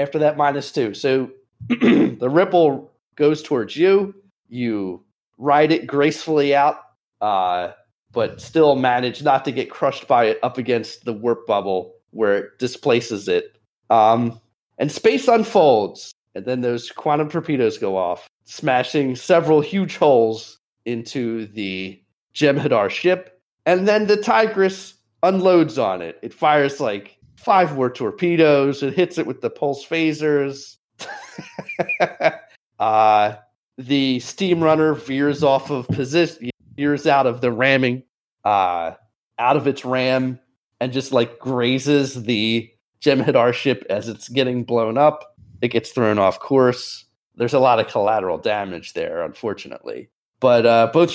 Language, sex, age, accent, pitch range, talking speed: English, male, 30-49, American, 120-155 Hz, 140 wpm